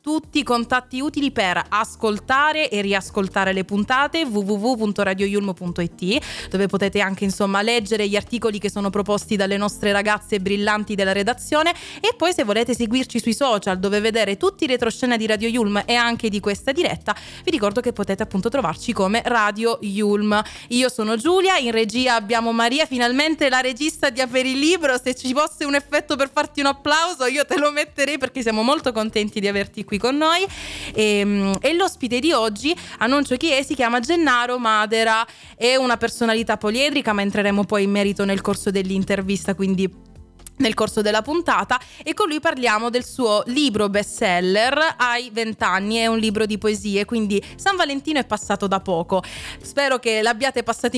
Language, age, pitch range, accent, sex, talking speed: Italian, 20-39, 205-265 Hz, native, female, 175 wpm